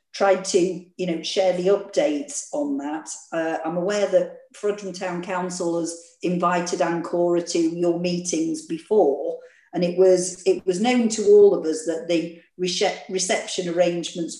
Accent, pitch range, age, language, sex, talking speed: British, 170-200 Hz, 50-69, English, female, 155 wpm